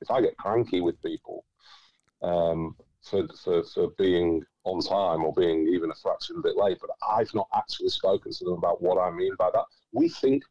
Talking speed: 205 wpm